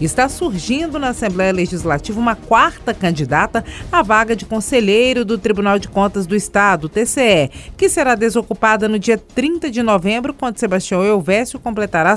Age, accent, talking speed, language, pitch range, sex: 40-59, Brazilian, 155 wpm, Portuguese, 180-240 Hz, female